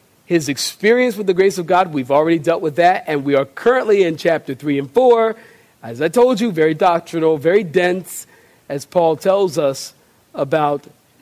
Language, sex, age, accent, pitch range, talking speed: English, male, 40-59, American, 140-180 Hz, 180 wpm